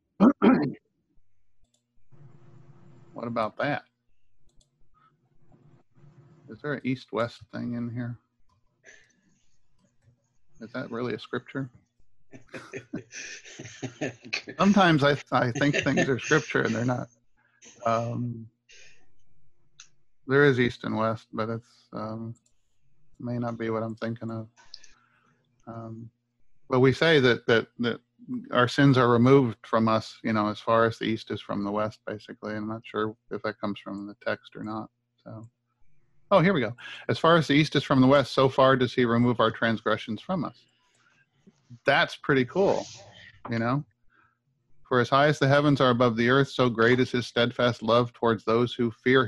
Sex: male